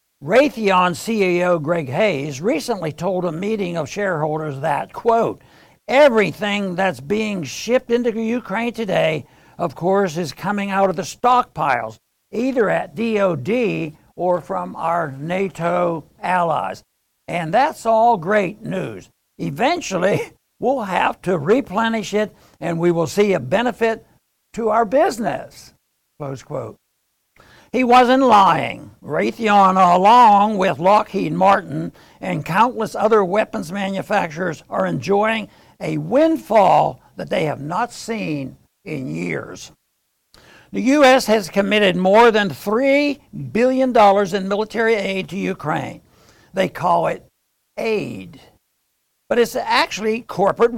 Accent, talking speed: American, 120 wpm